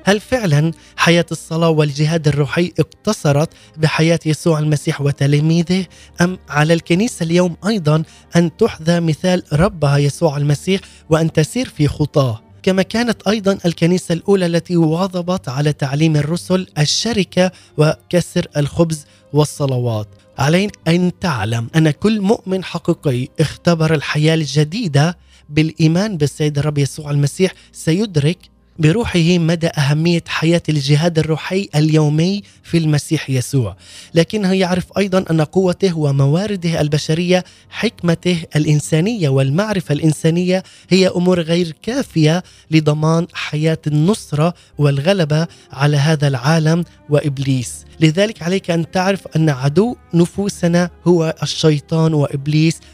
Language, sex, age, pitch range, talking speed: Arabic, male, 20-39, 150-180 Hz, 110 wpm